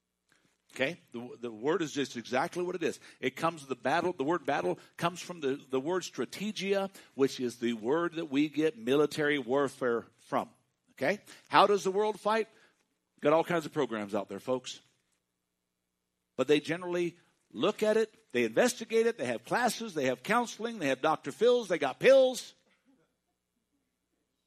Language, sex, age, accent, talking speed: English, male, 60-79, American, 170 wpm